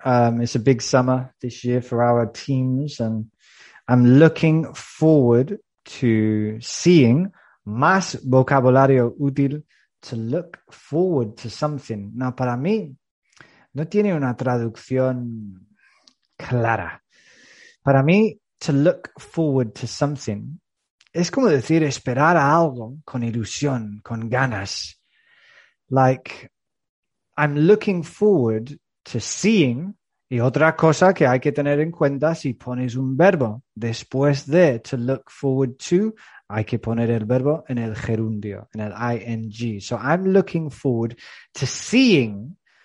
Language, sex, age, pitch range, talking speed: English, male, 30-49, 115-155 Hz, 125 wpm